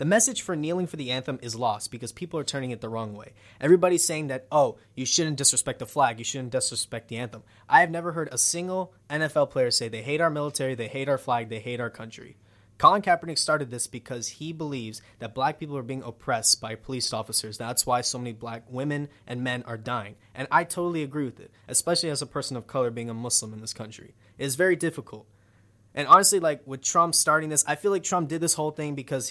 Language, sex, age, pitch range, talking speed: English, male, 20-39, 120-155 Hz, 235 wpm